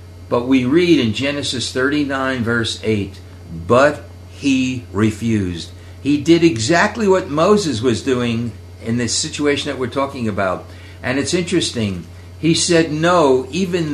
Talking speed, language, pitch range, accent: 140 wpm, English, 95-130 Hz, American